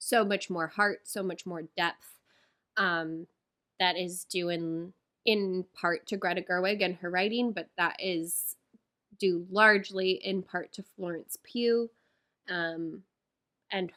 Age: 10-29